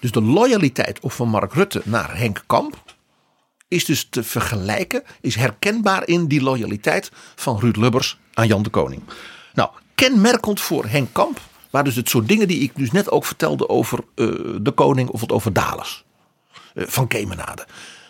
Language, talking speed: Dutch, 170 wpm